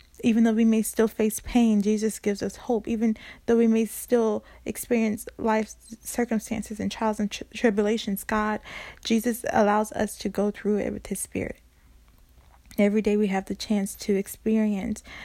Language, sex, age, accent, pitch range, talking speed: English, female, 20-39, American, 200-230 Hz, 165 wpm